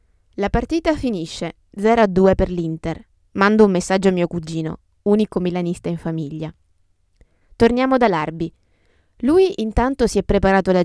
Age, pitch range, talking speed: 20-39, 160-215 Hz, 140 wpm